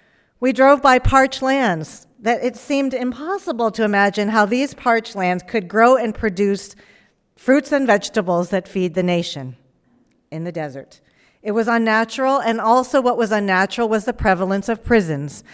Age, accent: 50-69, American